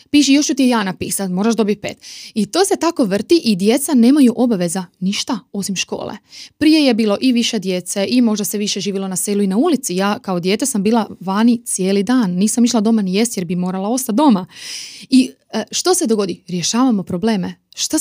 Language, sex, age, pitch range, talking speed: Croatian, female, 30-49, 195-245 Hz, 205 wpm